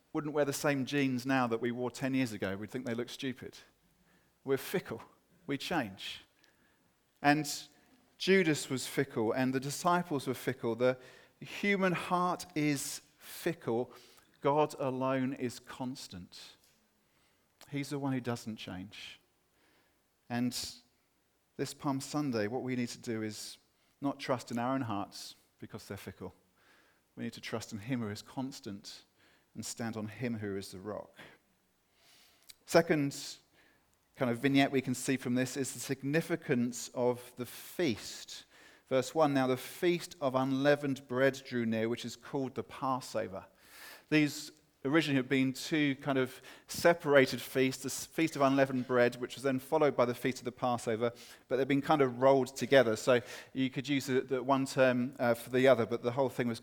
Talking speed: 170 wpm